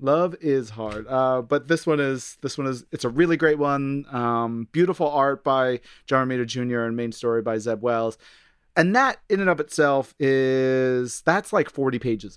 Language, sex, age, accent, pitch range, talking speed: English, male, 30-49, American, 125-155 Hz, 195 wpm